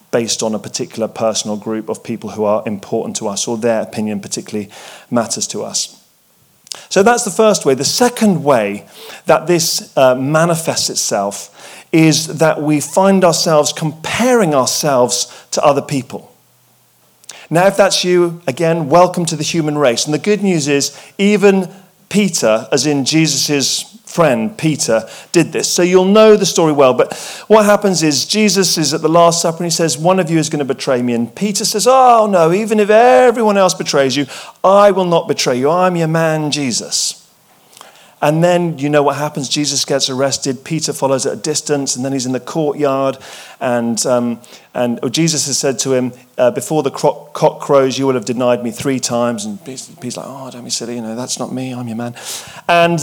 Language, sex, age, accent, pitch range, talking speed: English, male, 40-59, British, 130-180 Hz, 195 wpm